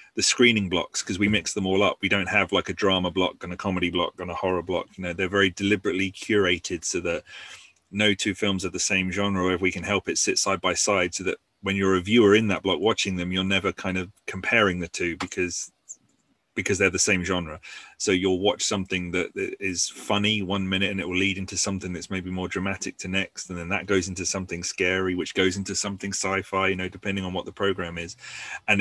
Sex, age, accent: male, 30-49, British